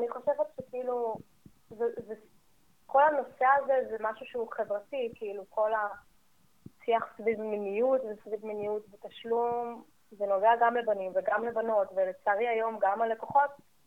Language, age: Hebrew, 20-39